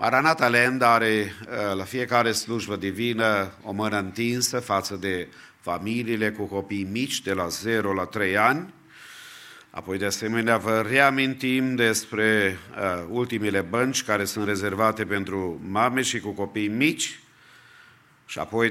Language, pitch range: English, 100-120 Hz